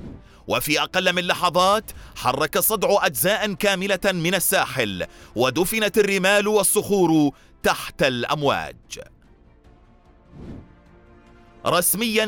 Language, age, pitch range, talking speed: Arabic, 30-49, 165-200 Hz, 80 wpm